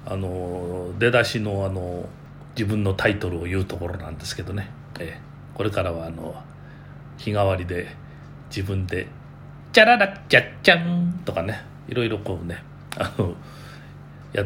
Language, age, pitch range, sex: Japanese, 40-59, 95-145 Hz, male